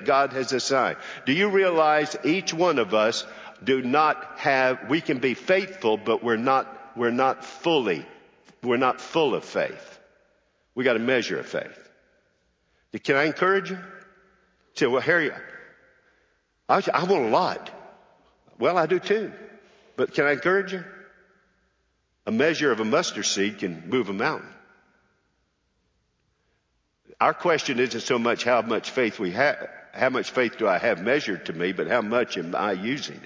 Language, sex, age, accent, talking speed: English, male, 50-69, American, 160 wpm